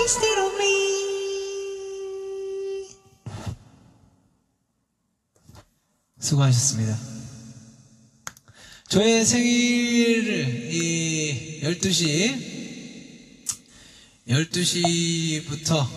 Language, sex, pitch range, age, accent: Korean, male, 115-155 Hz, 20-39, native